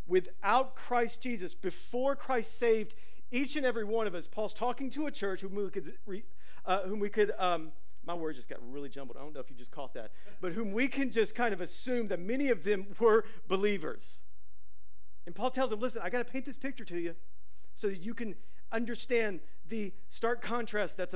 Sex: male